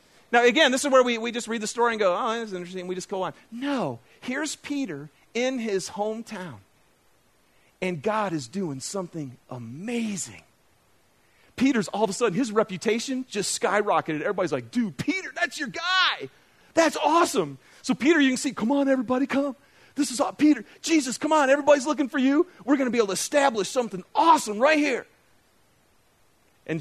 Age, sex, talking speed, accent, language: 40-59, male, 185 wpm, American, English